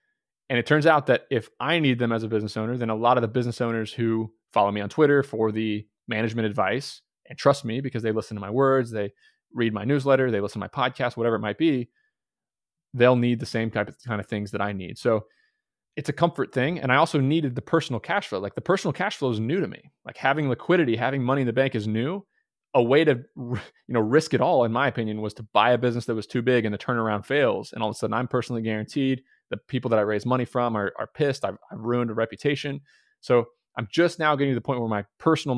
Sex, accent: male, American